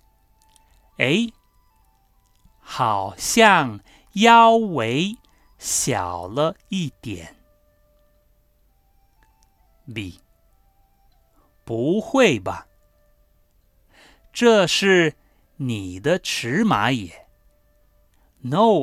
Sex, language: male, English